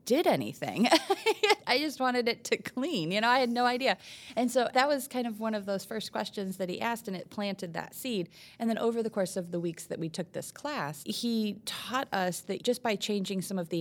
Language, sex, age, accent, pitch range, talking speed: English, female, 30-49, American, 160-200 Hz, 245 wpm